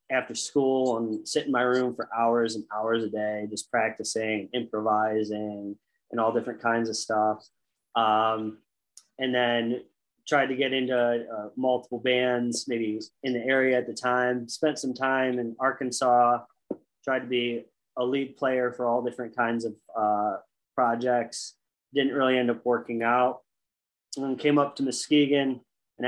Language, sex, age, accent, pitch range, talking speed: English, male, 20-39, American, 110-125 Hz, 160 wpm